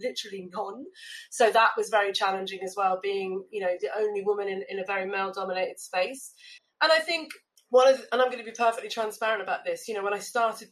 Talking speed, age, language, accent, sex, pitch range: 235 wpm, 30-49, English, British, female, 195-255 Hz